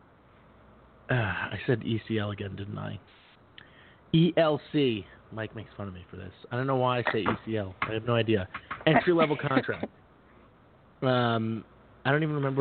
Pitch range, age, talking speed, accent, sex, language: 110-135 Hz, 30-49, 155 wpm, American, male, English